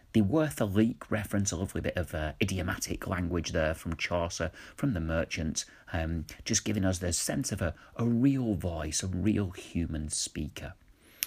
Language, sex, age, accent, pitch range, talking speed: English, male, 40-59, British, 75-100 Hz, 175 wpm